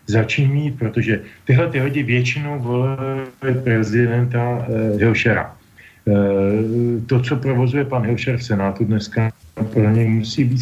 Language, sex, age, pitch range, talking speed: Slovak, male, 40-59, 105-125 Hz, 130 wpm